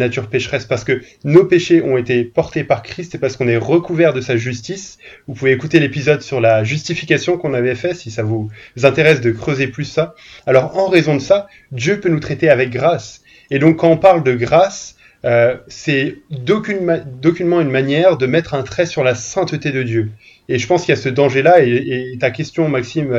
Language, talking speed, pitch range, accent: French, 215 wpm, 125-160 Hz, French